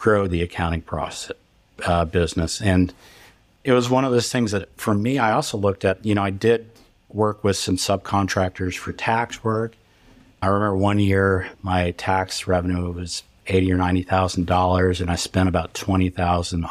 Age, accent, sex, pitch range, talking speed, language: 50-69, American, male, 90-100 Hz, 170 wpm, English